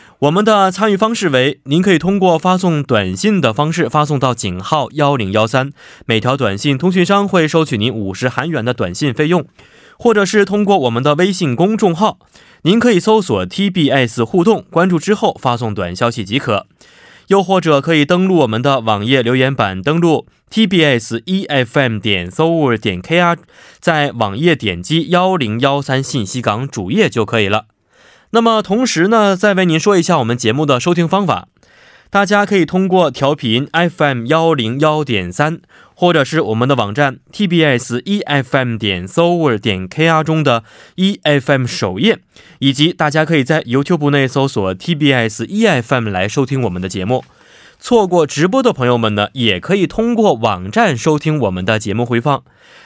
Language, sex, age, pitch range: Korean, male, 20-39, 120-180 Hz